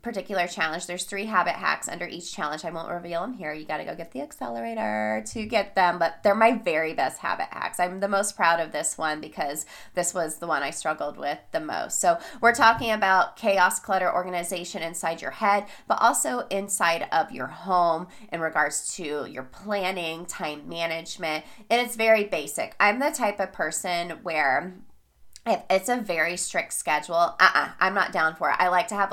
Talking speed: 200 wpm